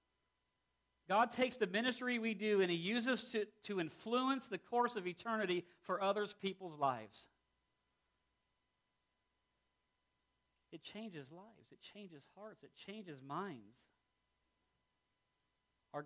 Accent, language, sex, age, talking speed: American, English, male, 50-69, 115 wpm